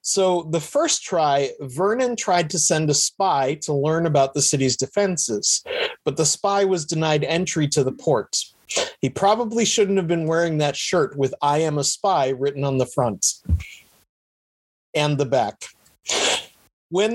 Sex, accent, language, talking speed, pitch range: male, American, English, 160 wpm, 145-195 Hz